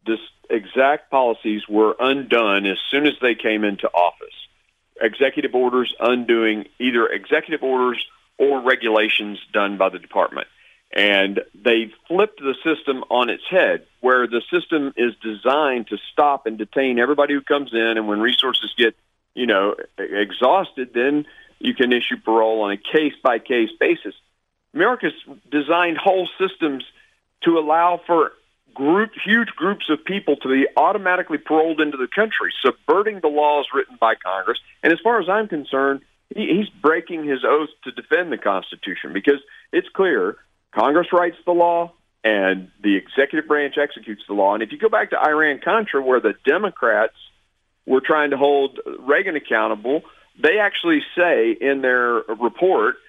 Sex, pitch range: male, 120-175 Hz